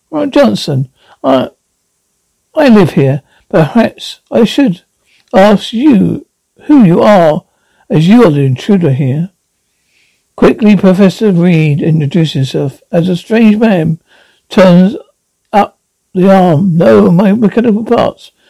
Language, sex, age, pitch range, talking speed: English, male, 60-79, 165-215 Hz, 115 wpm